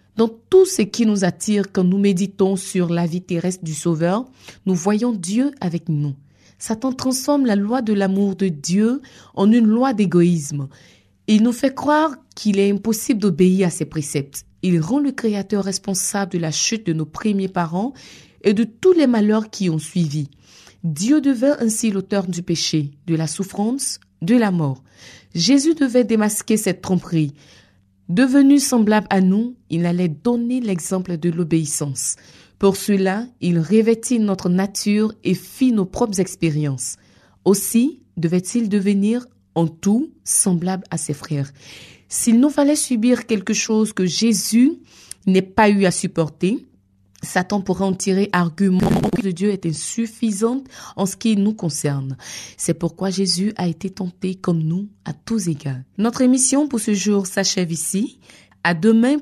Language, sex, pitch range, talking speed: French, female, 170-225 Hz, 160 wpm